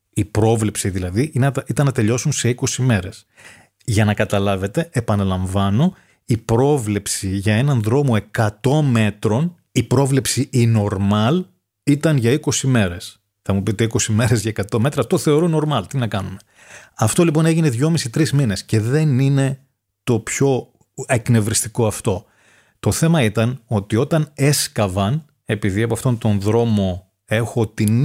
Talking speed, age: 145 wpm, 30-49